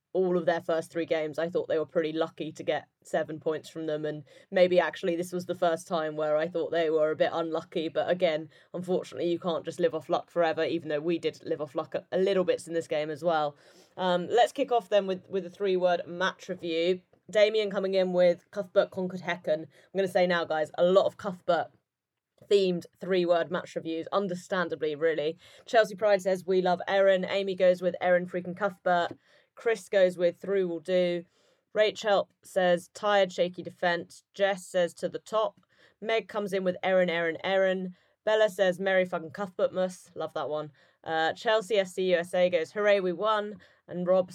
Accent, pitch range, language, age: British, 165-190 Hz, English, 20-39